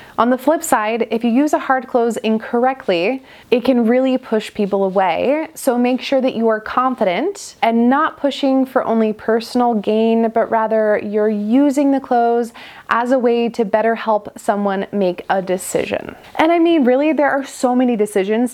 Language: English